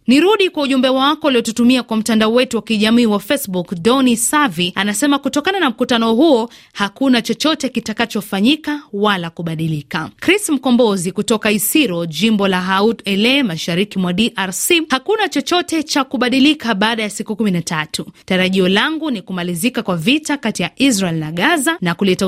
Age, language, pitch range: 30-49, Swahili, 195-260 Hz